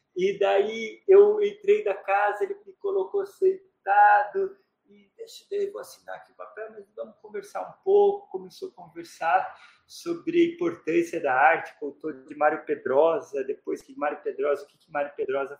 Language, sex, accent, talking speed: Portuguese, male, Brazilian, 170 wpm